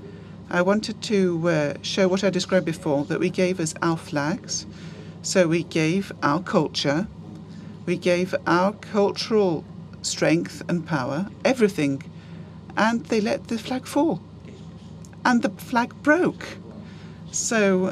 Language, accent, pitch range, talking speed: Greek, British, 165-200 Hz, 130 wpm